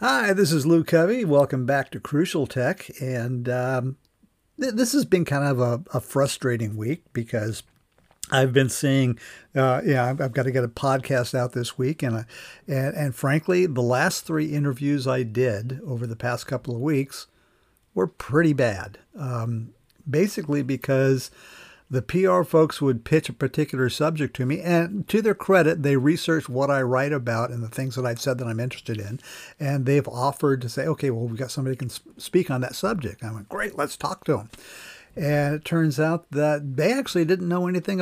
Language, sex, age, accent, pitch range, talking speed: English, male, 50-69, American, 125-160 Hz, 195 wpm